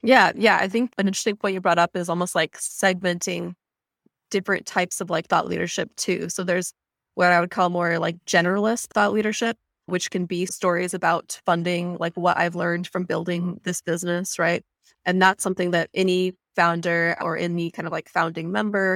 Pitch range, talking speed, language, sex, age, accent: 175-190 Hz, 190 wpm, English, female, 20-39, American